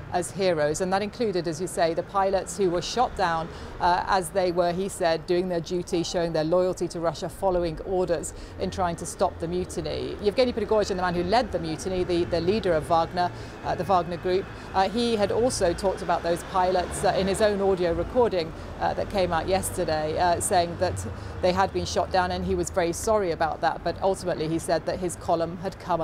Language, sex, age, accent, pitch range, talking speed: English, female, 40-59, British, 170-205 Hz, 220 wpm